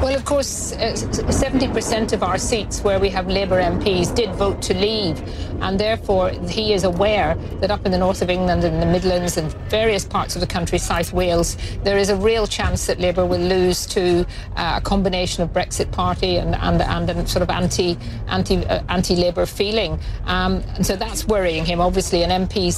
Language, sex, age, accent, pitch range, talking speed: English, female, 50-69, British, 170-200 Hz, 205 wpm